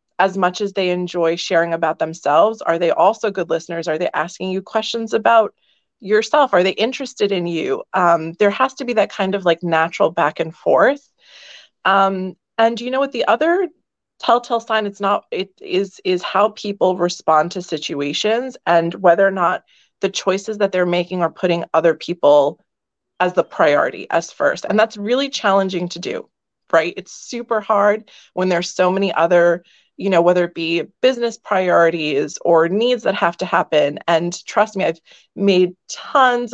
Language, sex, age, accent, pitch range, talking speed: English, female, 30-49, American, 170-215 Hz, 175 wpm